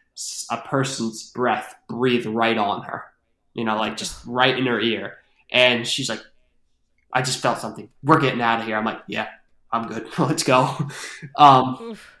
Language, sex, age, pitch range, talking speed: English, male, 20-39, 115-135 Hz, 170 wpm